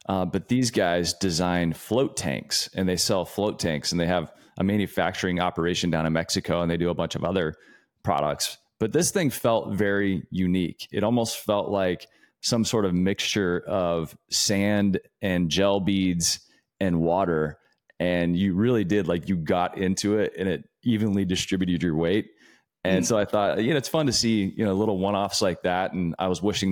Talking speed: 190 wpm